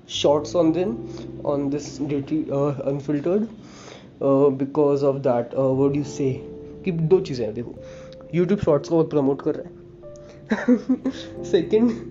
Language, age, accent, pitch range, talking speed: English, 20-39, Indian, 135-185 Hz, 125 wpm